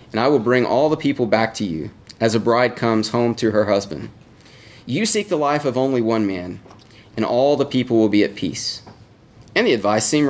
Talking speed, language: 220 wpm, English